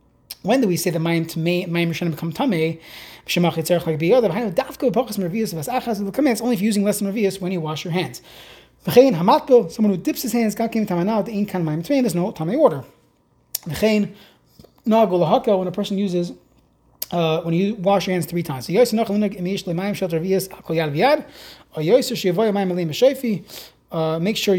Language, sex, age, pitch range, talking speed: English, male, 30-49, 170-220 Hz, 105 wpm